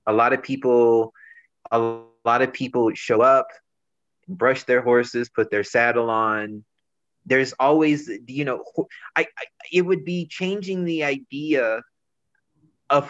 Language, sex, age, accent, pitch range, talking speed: English, male, 30-49, American, 125-150 Hz, 135 wpm